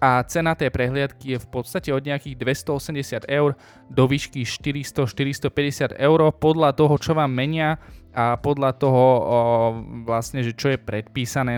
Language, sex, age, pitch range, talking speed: Slovak, male, 20-39, 120-150 Hz, 150 wpm